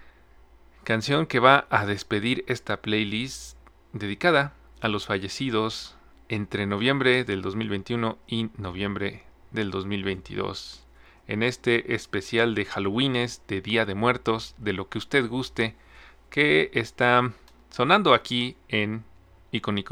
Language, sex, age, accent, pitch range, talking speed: Spanish, male, 40-59, Mexican, 95-120 Hz, 120 wpm